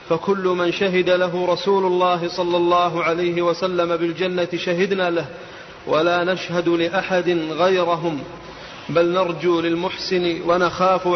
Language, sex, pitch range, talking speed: Arabic, male, 170-185 Hz, 115 wpm